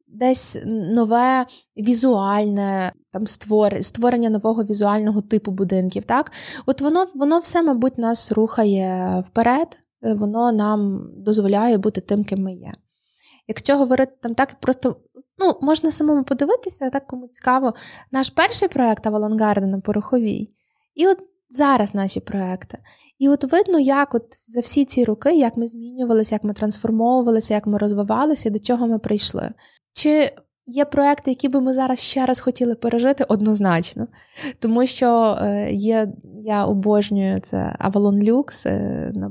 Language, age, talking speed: Ukrainian, 20-39, 145 wpm